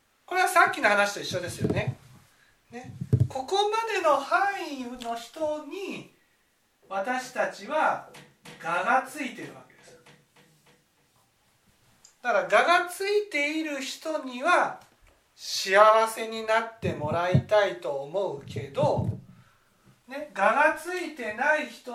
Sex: male